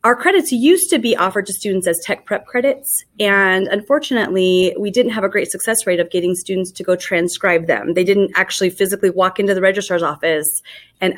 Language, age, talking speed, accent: English, 30-49, 205 wpm, American